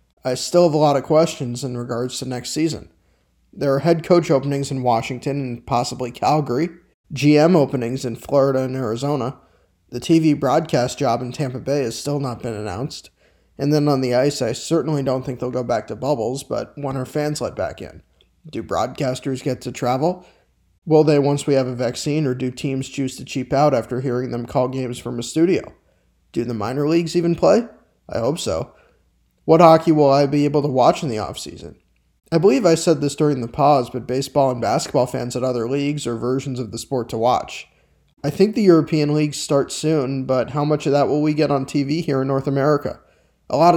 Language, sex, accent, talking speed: English, male, American, 210 wpm